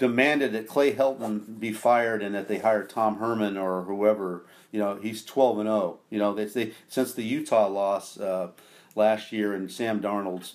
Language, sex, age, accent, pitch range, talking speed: English, male, 40-59, American, 100-120 Hz, 195 wpm